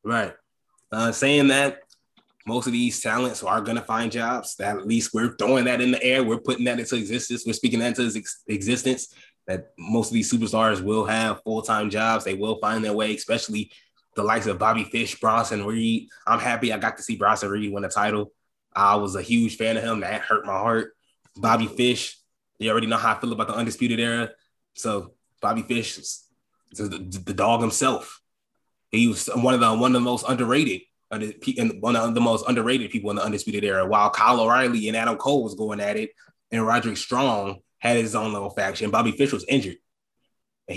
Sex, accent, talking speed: male, American, 205 wpm